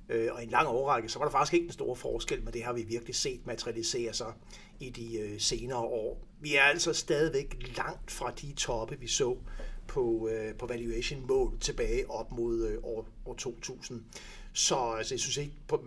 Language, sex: Danish, male